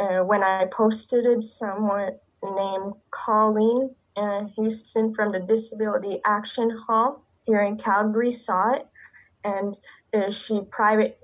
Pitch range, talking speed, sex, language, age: 185-215 Hz, 135 wpm, female, English, 20-39